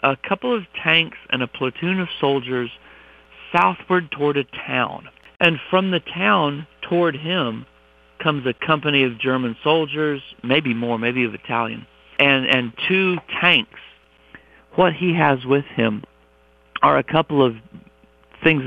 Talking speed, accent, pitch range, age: 140 wpm, American, 115-145 Hz, 50-69